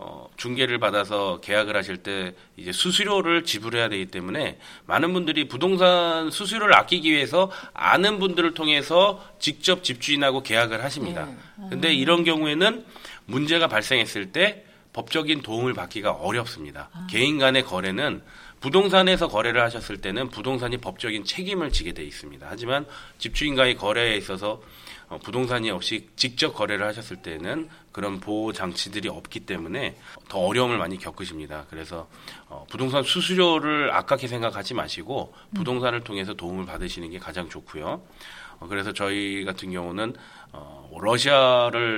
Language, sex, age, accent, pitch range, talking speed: Russian, male, 30-49, Korean, 105-165 Hz, 115 wpm